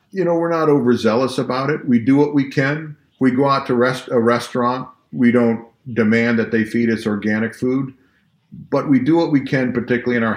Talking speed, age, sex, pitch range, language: 215 wpm, 50-69, male, 105-130 Hz, English